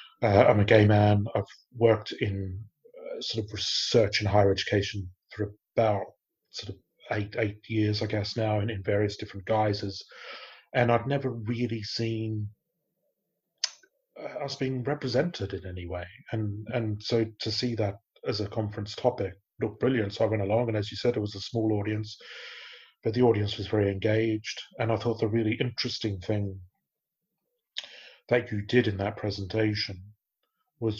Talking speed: 165 wpm